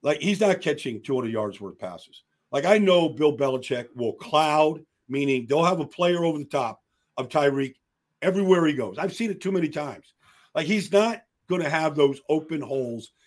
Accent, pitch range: American, 120-165 Hz